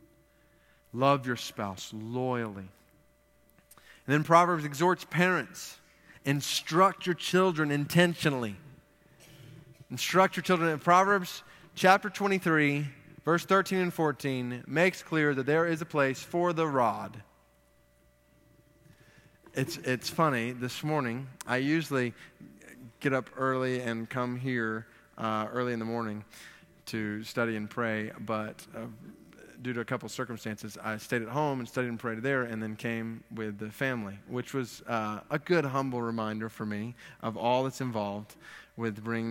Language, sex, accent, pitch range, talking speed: English, male, American, 115-150 Hz, 140 wpm